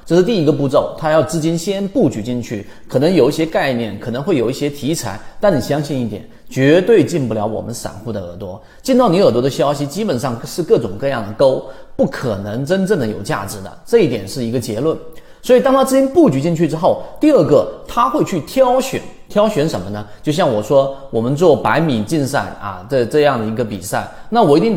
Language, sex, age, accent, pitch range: Chinese, male, 30-49, native, 115-180 Hz